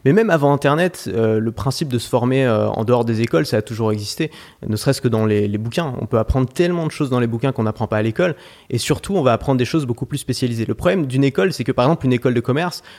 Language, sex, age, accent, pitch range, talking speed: French, male, 30-49, French, 115-145 Hz, 285 wpm